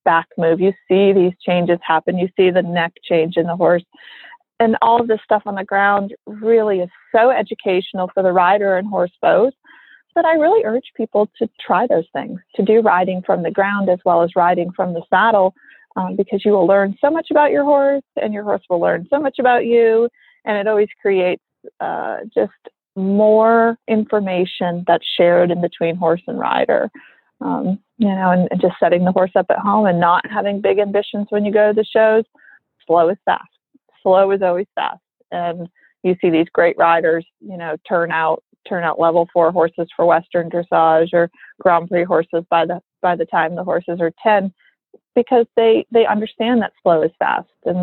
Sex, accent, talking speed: female, American, 200 wpm